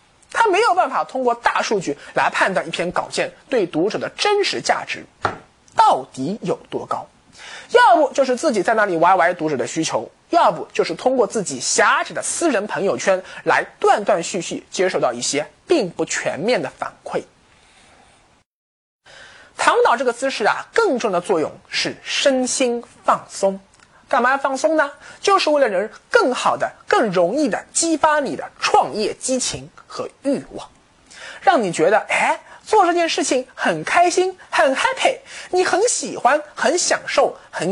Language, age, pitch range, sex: Chinese, 20-39, 255-390 Hz, male